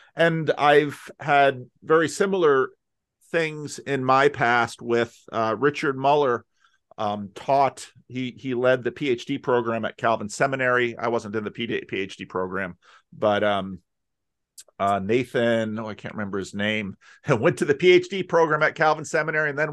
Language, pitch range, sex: English, 120-180 Hz, male